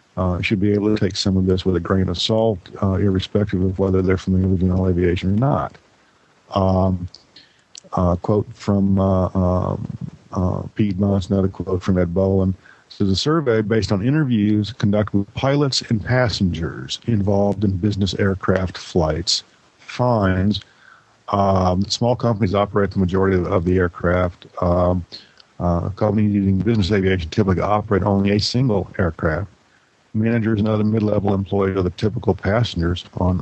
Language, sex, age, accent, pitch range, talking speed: English, male, 50-69, American, 90-105 Hz, 155 wpm